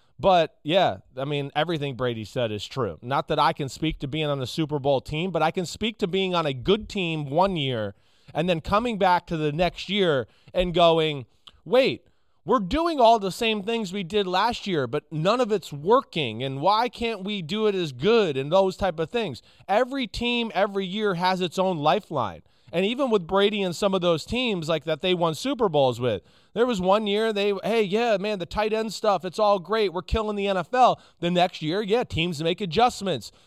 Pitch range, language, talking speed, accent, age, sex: 155-205 Hz, English, 220 wpm, American, 20-39, male